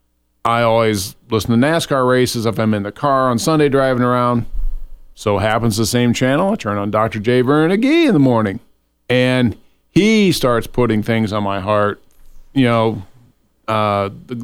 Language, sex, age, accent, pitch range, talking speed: English, male, 40-59, American, 110-135 Hz, 175 wpm